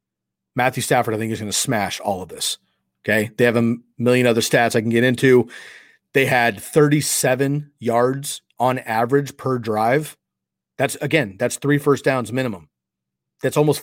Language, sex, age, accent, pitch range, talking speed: English, male, 30-49, American, 105-135 Hz, 170 wpm